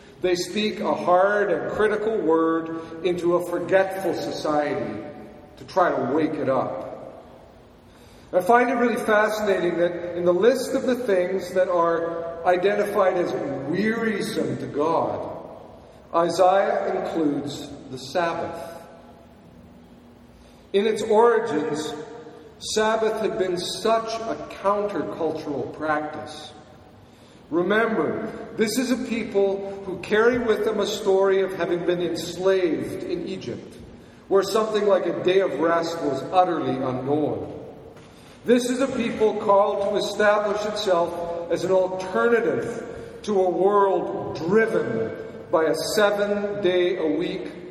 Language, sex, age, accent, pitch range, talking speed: English, male, 50-69, American, 170-210 Hz, 120 wpm